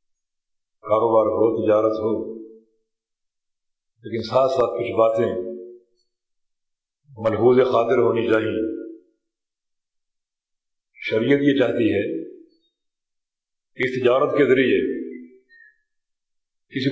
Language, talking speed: Urdu, 80 wpm